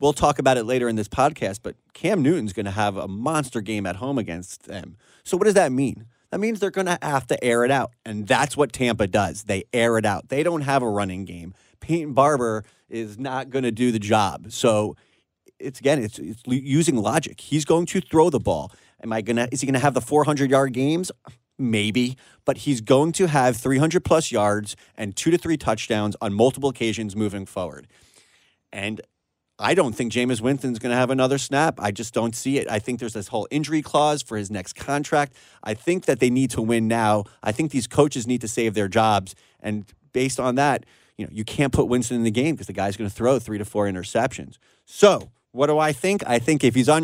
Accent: American